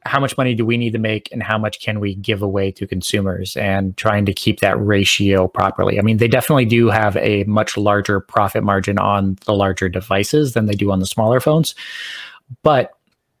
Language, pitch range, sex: English, 100-115 Hz, male